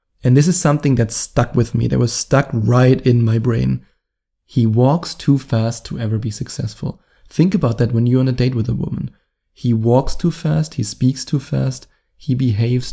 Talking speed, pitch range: 205 wpm, 120-135 Hz